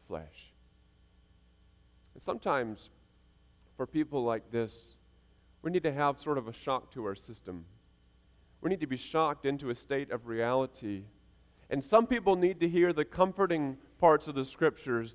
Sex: male